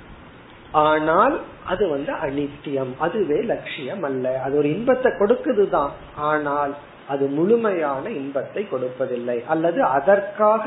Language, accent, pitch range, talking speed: Tamil, native, 150-195 Hz, 100 wpm